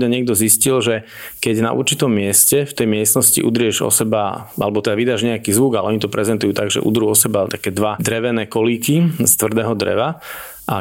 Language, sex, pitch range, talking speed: Slovak, male, 105-115 Hz, 195 wpm